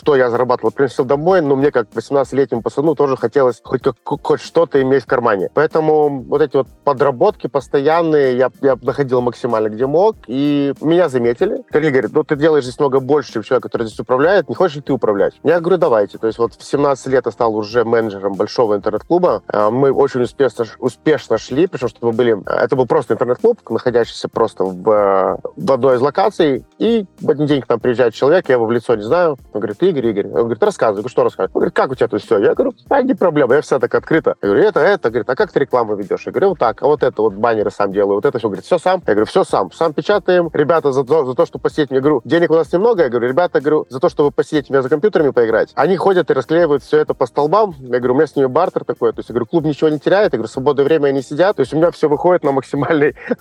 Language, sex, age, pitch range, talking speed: Russian, male, 30-49, 125-190 Hz, 250 wpm